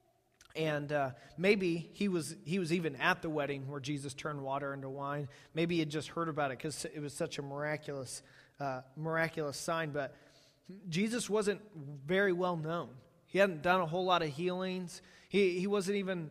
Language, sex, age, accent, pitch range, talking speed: English, male, 30-49, American, 145-180 Hz, 190 wpm